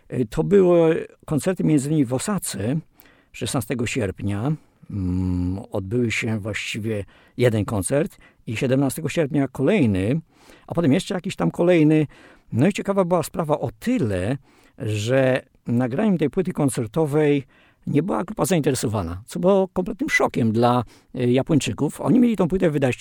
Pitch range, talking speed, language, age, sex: 105-145 Hz, 135 wpm, Polish, 50-69, male